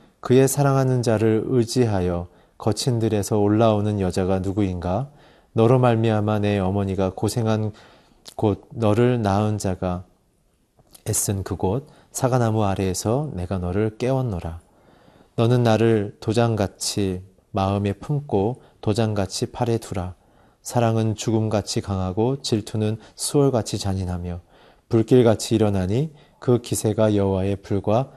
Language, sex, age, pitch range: Korean, male, 30-49, 95-120 Hz